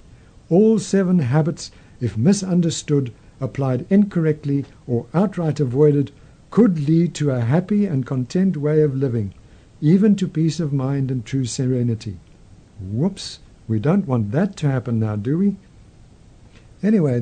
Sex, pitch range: male, 120-165 Hz